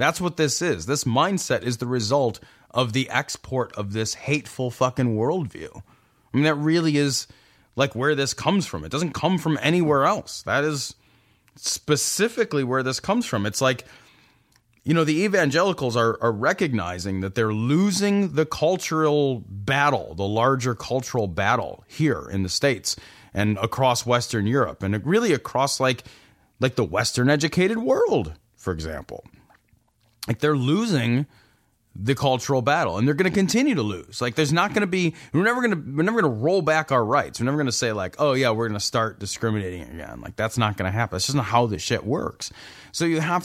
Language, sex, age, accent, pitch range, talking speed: English, male, 30-49, American, 115-160 Hz, 190 wpm